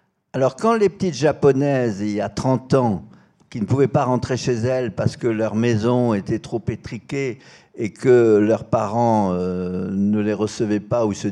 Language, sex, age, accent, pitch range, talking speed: French, male, 60-79, French, 110-155 Hz, 180 wpm